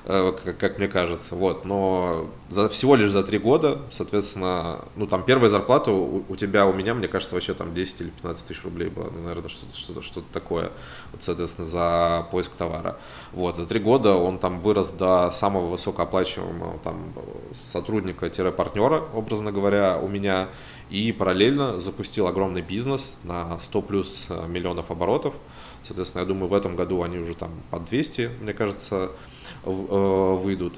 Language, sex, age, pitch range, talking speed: Russian, male, 20-39, 90-105 Hz, 150 wpm